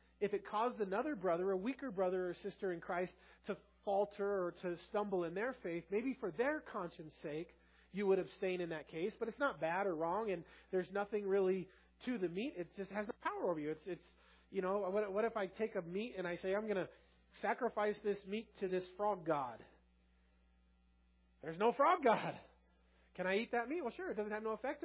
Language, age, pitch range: English, 30-49, 165-210 Hz